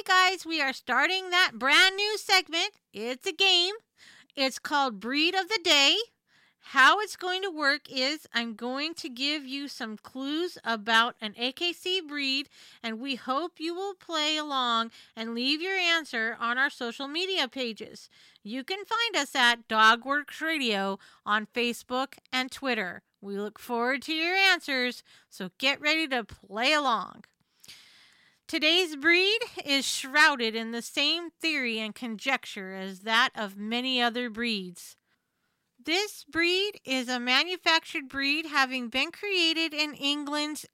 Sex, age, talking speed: female, 40-59, 150 wpm